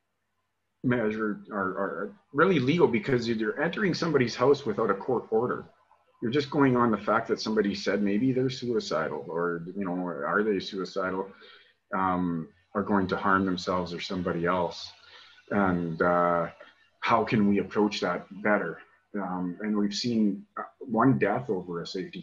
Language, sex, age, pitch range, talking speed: English, male, 30-49, 95-120 Hz, 160 wpm